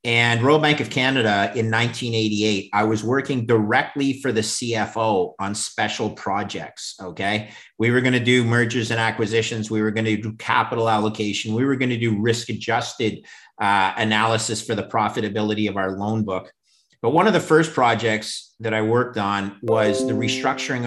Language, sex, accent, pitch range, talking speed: English, male, American, 105-120 Hz, 170 wpm